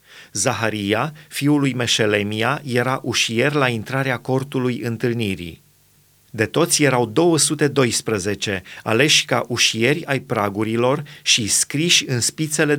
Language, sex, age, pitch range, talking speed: Romanian, male, 30-49, 115-145 Hz, 110 wpm